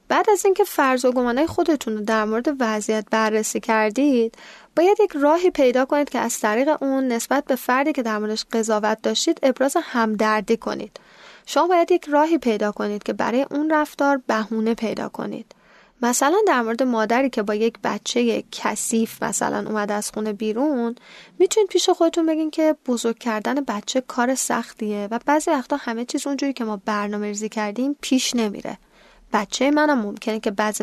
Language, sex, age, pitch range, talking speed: Persian, female, 10-29, 220-285 Hz, 165 wpm